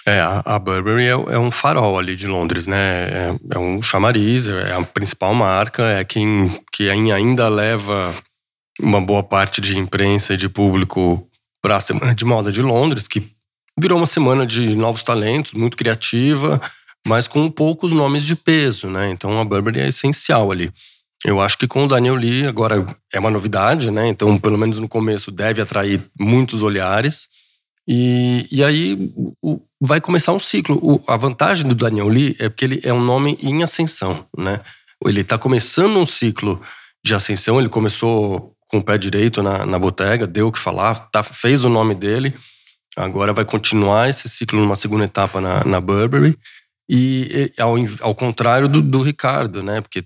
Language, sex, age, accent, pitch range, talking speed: Portuguese, male, 20-39, Brazilian, 100-130 Hz, 175 wpm